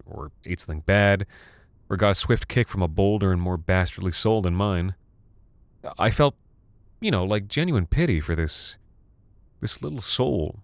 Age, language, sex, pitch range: 30-49, English, male, 85-105 Hz